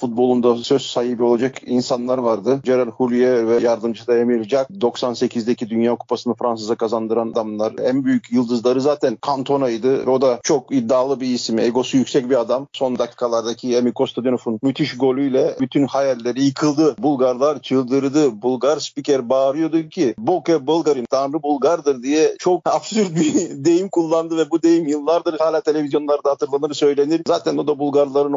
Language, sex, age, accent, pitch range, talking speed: Turkish, male, 50-69, native, 115-145 Hz, 150 wpm